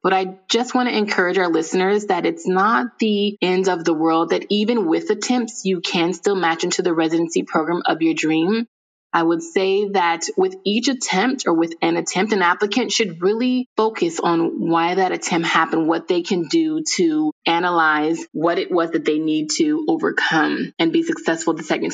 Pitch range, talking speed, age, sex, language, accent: 165-215 Hz, 195 wpm, 20-39, female, English, American